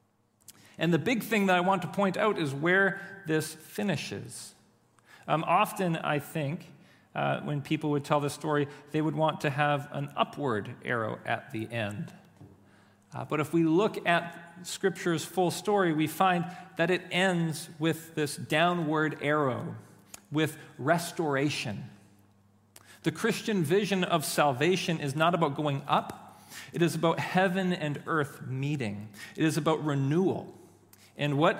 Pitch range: 130-170 Hz